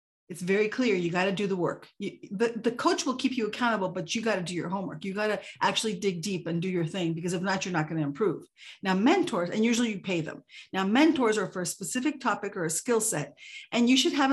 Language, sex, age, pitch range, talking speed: English, female, 40-59, 185-235 Hz, 270 wpm